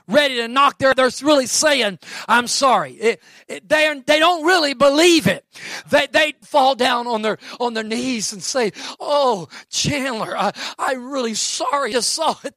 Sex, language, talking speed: male, English, 175 wpm